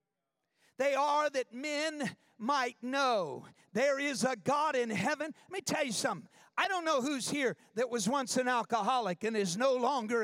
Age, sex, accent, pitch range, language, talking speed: 50-69, male, American, 250-365 Hz, English, 180 wpm